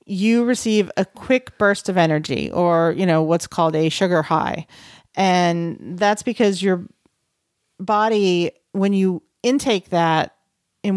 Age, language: 40-59, English